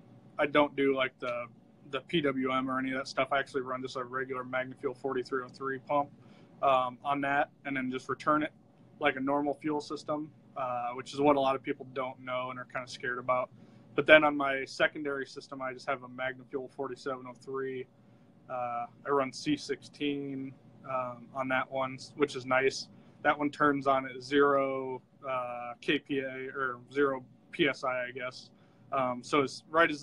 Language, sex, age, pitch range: English, male, 20-39, 125-140 Hz